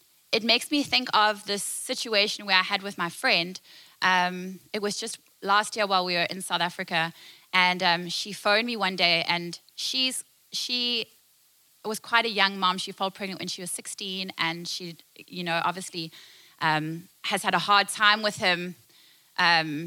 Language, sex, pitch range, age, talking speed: English, female, 180-220 Hz, 20-39, 185 wpm